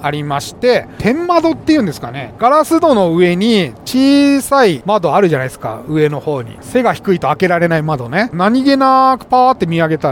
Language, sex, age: Japanese, male, 40-59